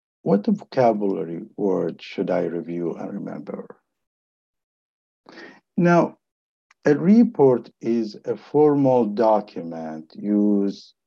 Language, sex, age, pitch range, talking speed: English, male, 60-79, 95-125 Hz, 90 wpm